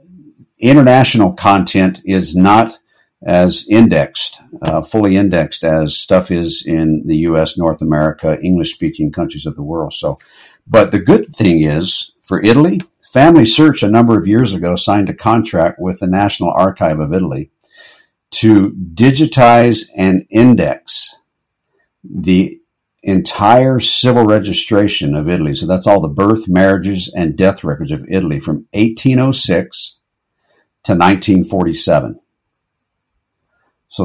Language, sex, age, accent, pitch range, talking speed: English, male, 60-79, American, 90-115 Hz, 125 wpm